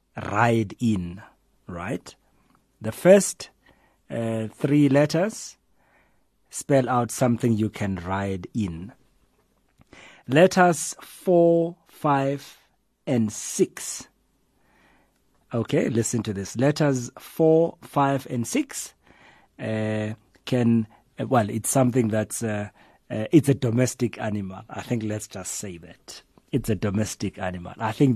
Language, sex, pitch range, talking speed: English, male, 110-140 Hz, 115 wpm